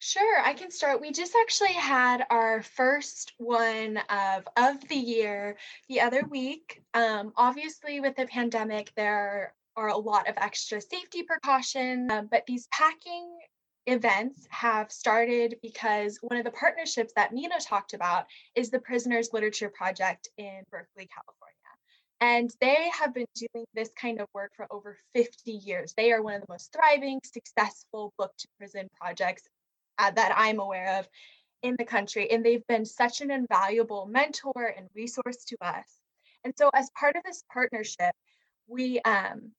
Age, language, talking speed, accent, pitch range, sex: 10-29, English, 160 wpm, American, 210-270 Hz, female